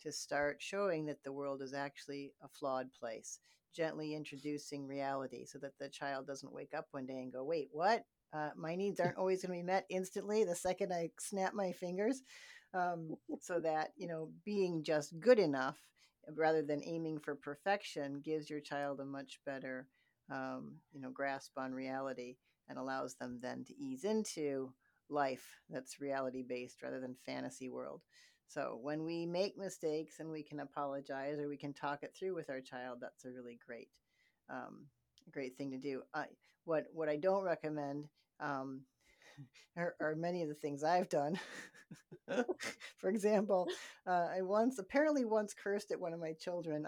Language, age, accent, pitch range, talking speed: English, 50-69, American, 140-175 Hz, 175 wpm